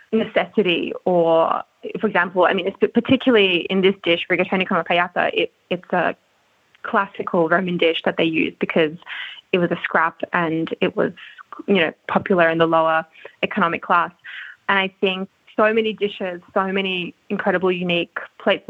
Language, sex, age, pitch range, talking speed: Italian, female, 20-39, 175-210 Hz, 155 wpm